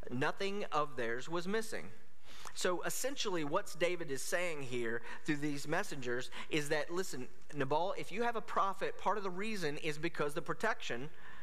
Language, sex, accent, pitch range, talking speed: English, male, American, 135-190 Hz, 170 wpm